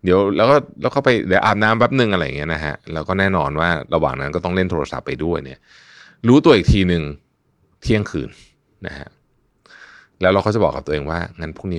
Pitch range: 80-110 Hz